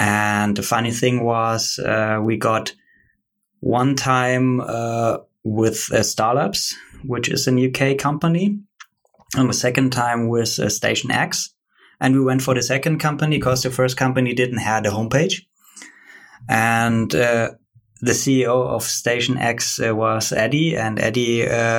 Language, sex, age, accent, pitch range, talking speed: English, male, 20-39, German, 115-135 Hz, 150 wpm